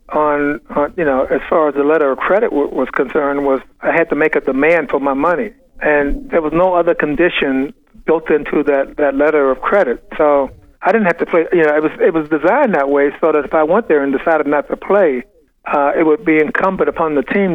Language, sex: English, male